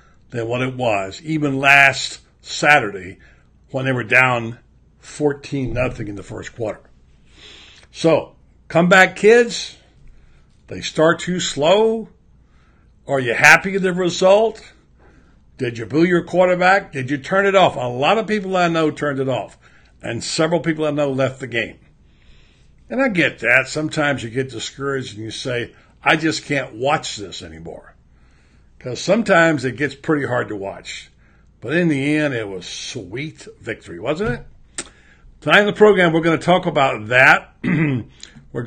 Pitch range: 115-160 Hz